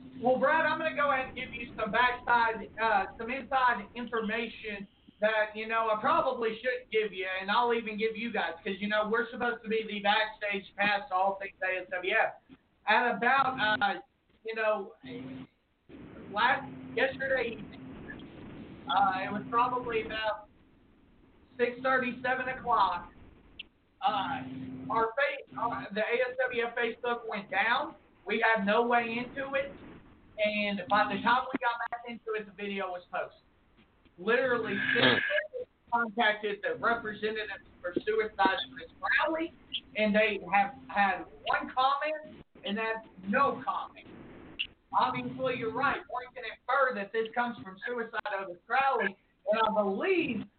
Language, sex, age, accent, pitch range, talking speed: English, male, 40-59, American, 210-250 Hz, 145 wpm